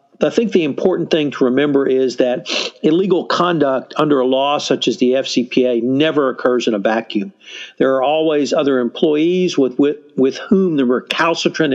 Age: 60-79